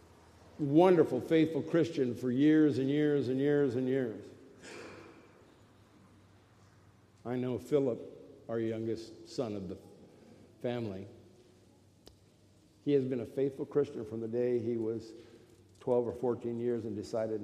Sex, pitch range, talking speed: male, 110-145 Hz, 125 wpm